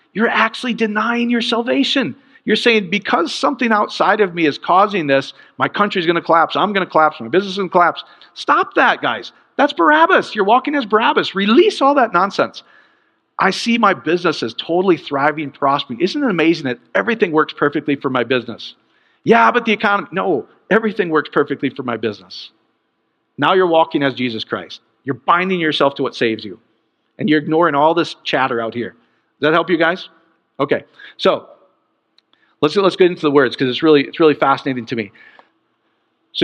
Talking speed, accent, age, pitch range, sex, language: 190 wpm, American, 50-69, 130-190 Hz, male, English